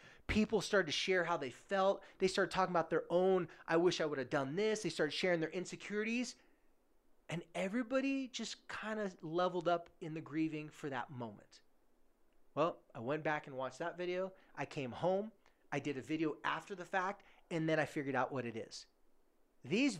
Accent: American